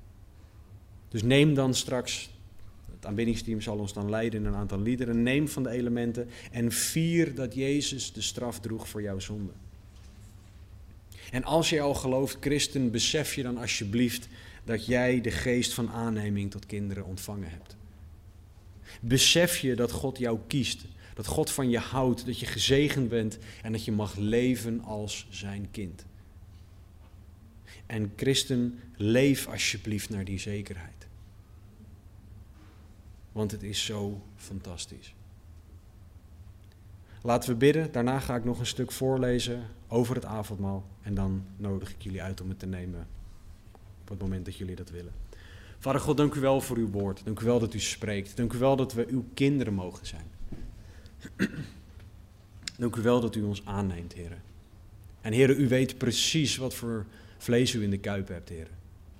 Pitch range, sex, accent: 95-120 Hz, male, Dutch